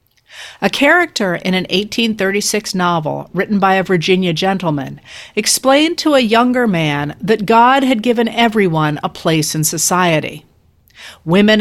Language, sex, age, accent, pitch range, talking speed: English, female, 50-69, American, 155-225 Hz, 135 wpm